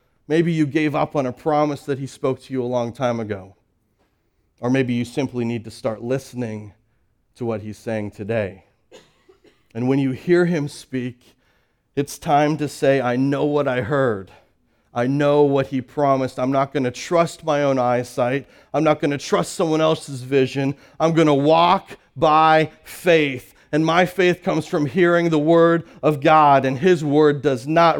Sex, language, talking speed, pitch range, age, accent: male, English, 185 wpm, 125-170 Hz, 40-59, American